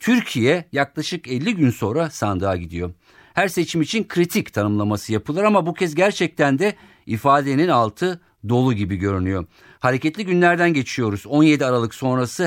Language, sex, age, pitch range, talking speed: Turkish, male, 50-69, 105-155 Hz, 140 wpm